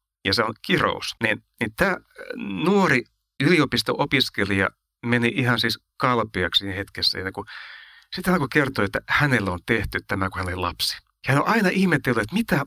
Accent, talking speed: native, 180 wpm